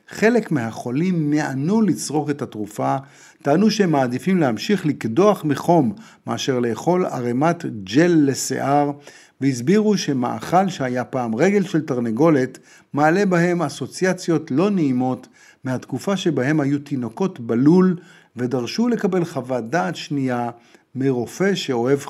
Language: Hebrew